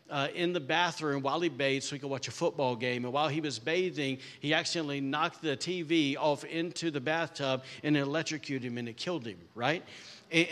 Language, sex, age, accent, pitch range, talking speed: English, male, 50-69, American, 135-160 Hz, 215 wpm